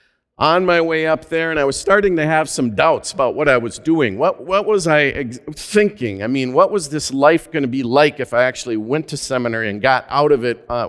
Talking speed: 255 wpm